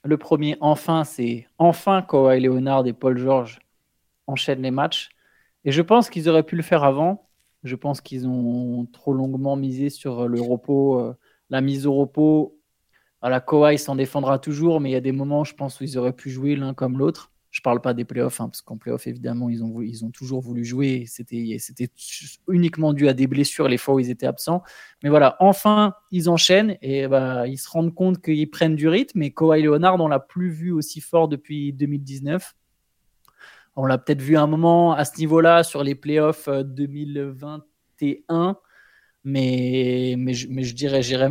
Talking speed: 200 wpm